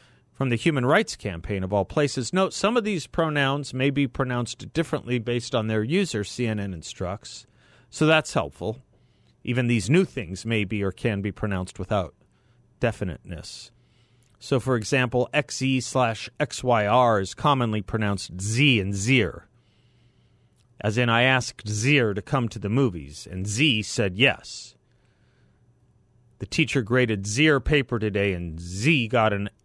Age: 40-59